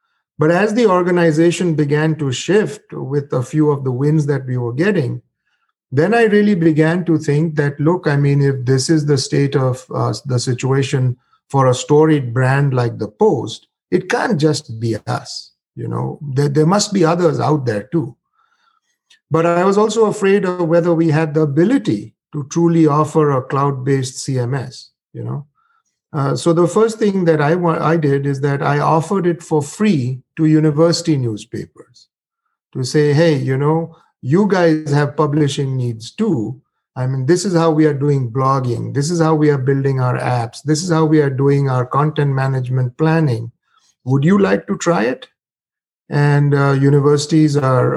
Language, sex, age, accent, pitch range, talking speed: English, male, 50-69, Indian, 135-170 Hz, 180 wpm